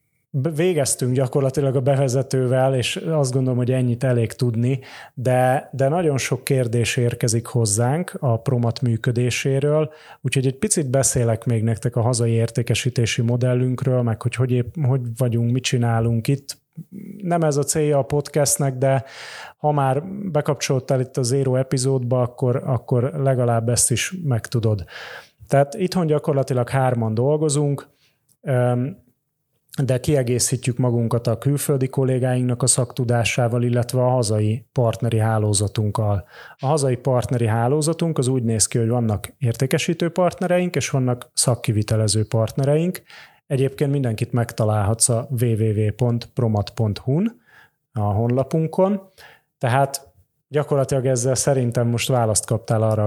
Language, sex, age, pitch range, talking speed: Hungarian, male, 30-49, 120-140 Hz, 125 wpm